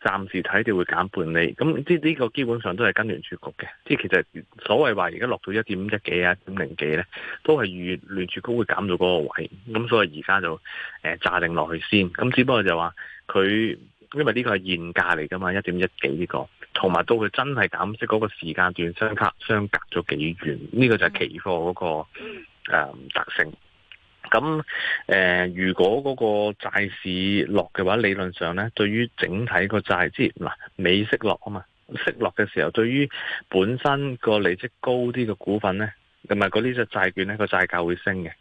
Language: Chinese